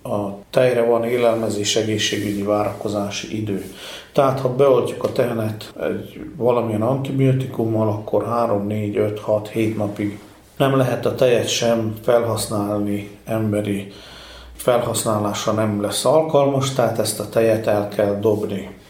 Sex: male